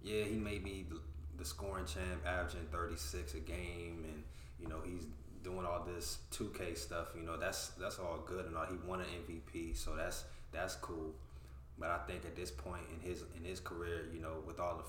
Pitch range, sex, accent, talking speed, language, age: 70-90 Hz, male, American, 225 wpm, English, 20-39